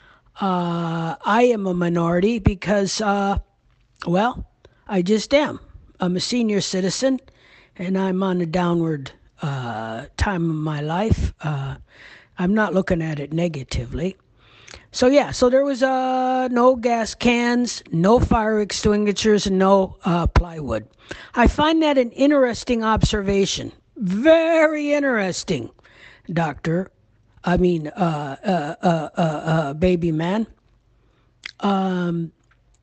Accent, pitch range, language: American, 170-230 Hz, English